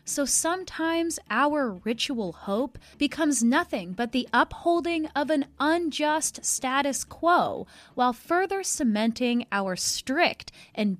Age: 20-39